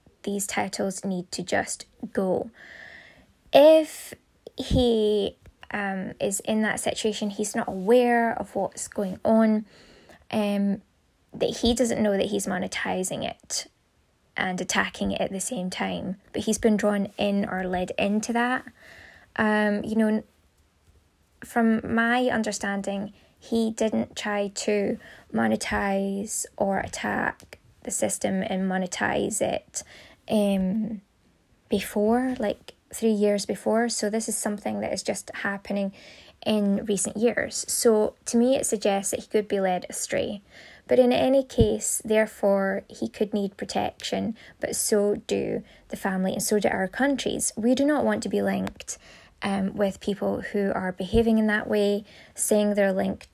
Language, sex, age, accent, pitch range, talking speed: English, female, 10-29, British, 195-225 Hz, 145 wpm